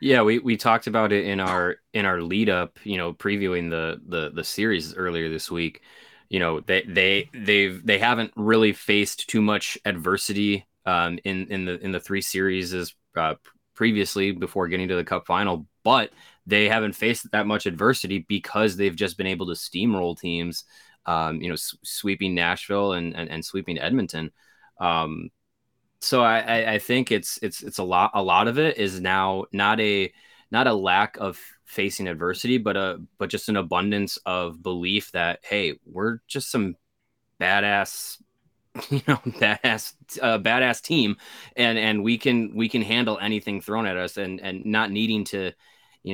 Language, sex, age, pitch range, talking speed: English, male, 20-39, 90-110 Hz, 180 wpm